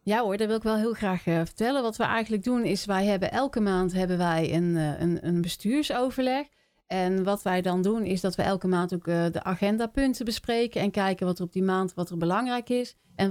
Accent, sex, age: Dutch, female, 40-59